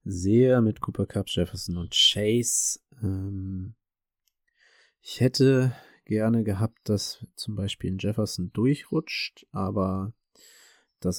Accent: German